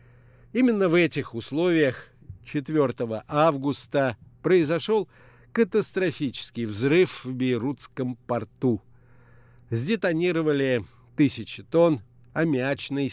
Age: 50-69